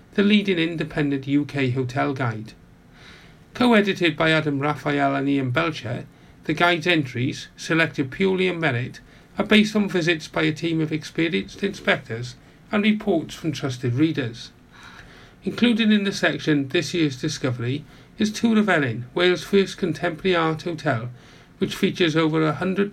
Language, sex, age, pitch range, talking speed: English, male, 40-59, 140-185 Hz, 145 wpm